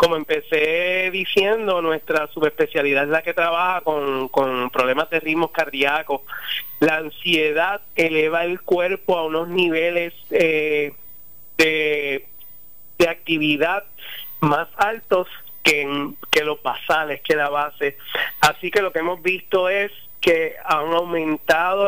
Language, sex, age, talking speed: Spanish, male, 30-49, 125 wpm